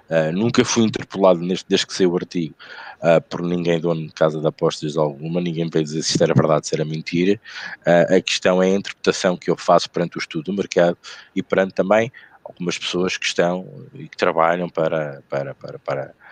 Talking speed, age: 215 wpm, 20-39